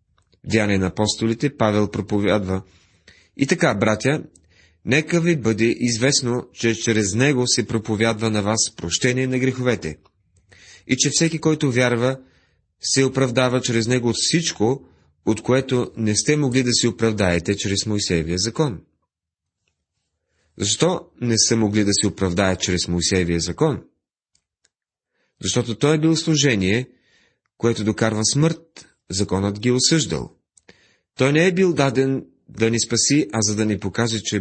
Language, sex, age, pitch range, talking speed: Bulgarian, male, 30-49, 95-130 Hz, 140 wpm